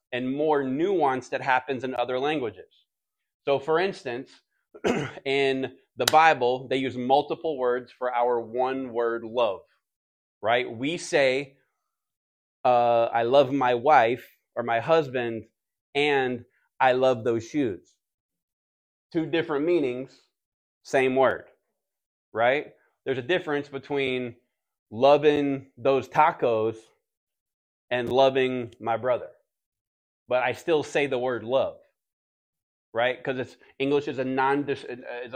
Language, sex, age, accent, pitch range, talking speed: English, male, 20-39, American, 120-135 Hz, 120 wpm